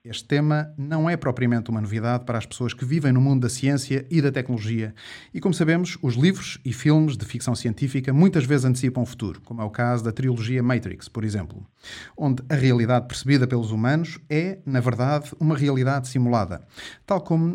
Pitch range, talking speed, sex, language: 120-150 Hz, 195 wpm, male, Portuguese